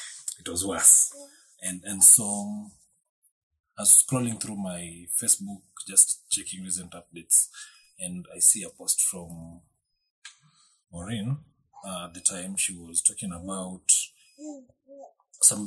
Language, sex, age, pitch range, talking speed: English, male, 30-49, 85-130 Hz, 125 wpm